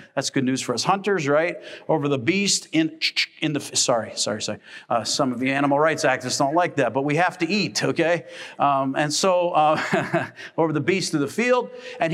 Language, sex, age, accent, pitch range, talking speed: English, male, 50-69, American, 160-210 Hz, 215 wpm